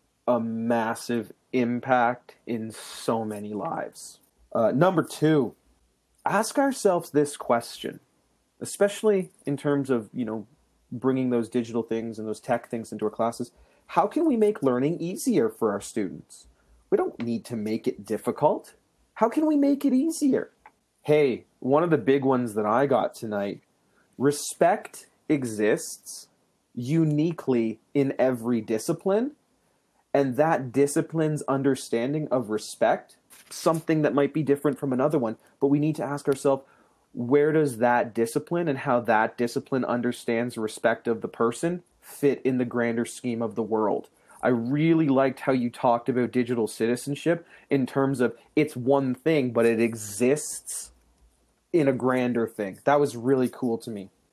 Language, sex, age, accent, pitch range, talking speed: English, male, 30-49, American, 115-150 Hz, 150 wpm